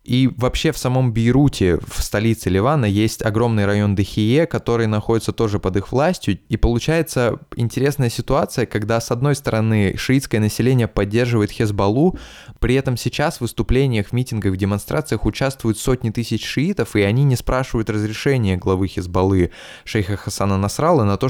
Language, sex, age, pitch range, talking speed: Russian, male, 20-39, 100-120 Hz, 155 wpm